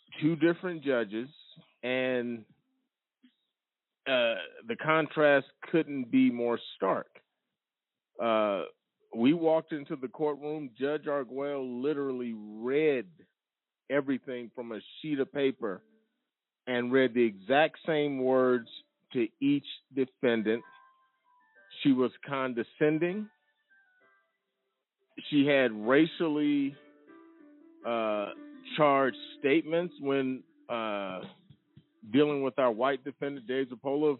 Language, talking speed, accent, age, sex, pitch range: English, 95 wpm, American, 40-59, male, 135-195 Hz